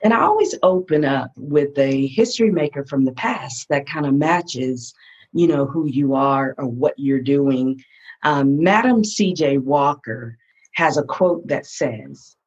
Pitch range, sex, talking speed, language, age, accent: 135-180 Hz, female, 165 wpm, English, 50-69, American